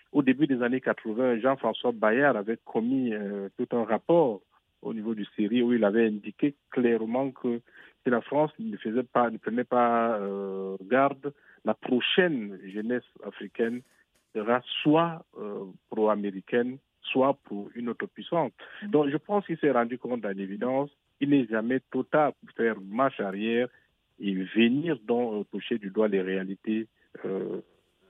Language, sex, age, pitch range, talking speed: French, male, 50-69, 105-135 Hz, 150 wpm